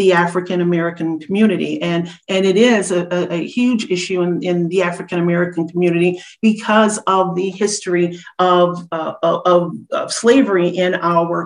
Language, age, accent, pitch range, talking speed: English, 40-59, American, 180-215 Hz, 145 wpm